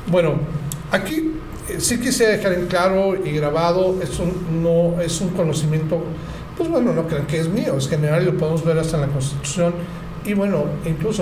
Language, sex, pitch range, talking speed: Spanish, male, 155-185 Hz, 200 wpm